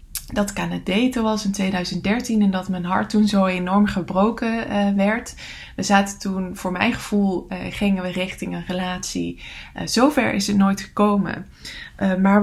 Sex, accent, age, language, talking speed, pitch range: female, Dutch, 20-39, English, 170 wpm, 185-245 Hz